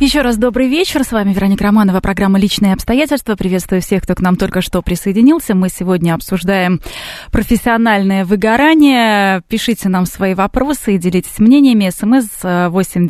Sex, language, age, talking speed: female, Russian, 20-39, 140 wpm